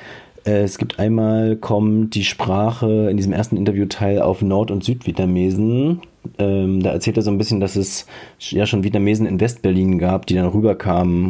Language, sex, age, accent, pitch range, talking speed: German, male, 40-59, German, 95-110 Hz, 165 wpm